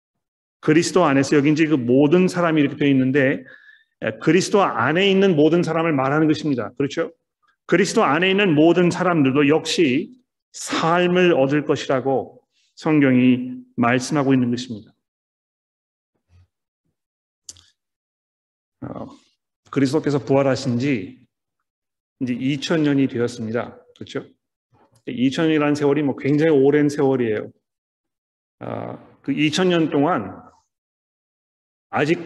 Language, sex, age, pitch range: Korean, male, 40-59, 135-170 Hz